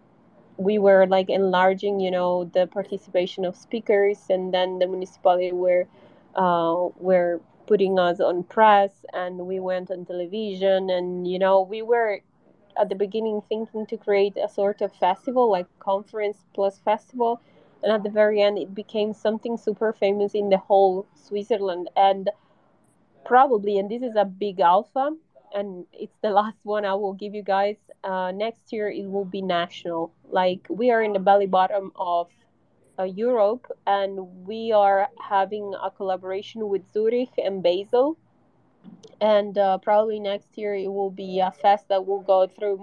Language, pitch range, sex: English, 185-210 Hz, female